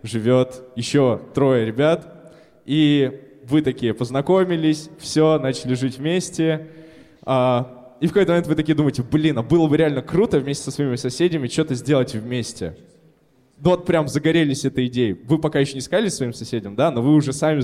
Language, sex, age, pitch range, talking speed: Russian, male, 20-39, 120-155 Hz, 165 wpm